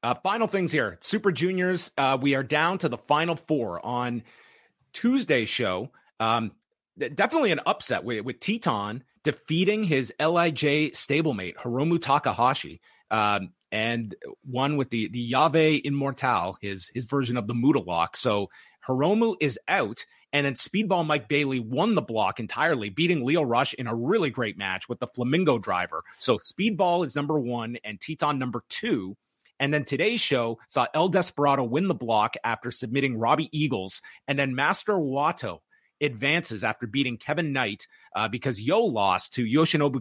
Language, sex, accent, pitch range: English, male, American, 120-165 Hz